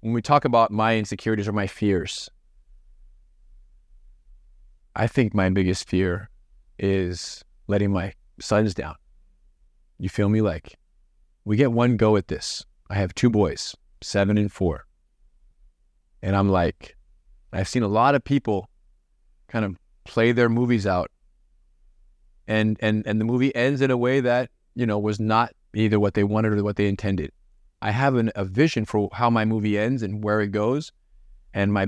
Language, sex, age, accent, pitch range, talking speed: English, male, 30-49, American, 90-110 Hz, 170 wpm